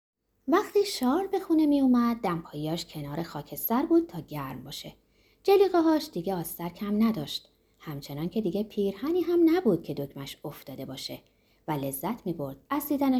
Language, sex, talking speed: Persian, female, 160 wpm